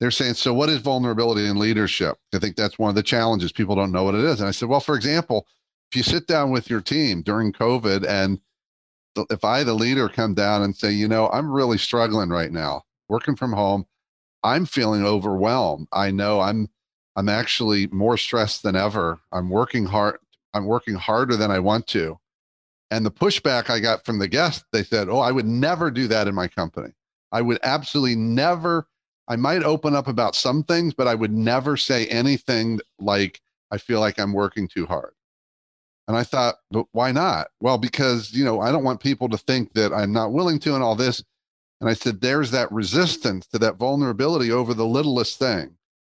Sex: male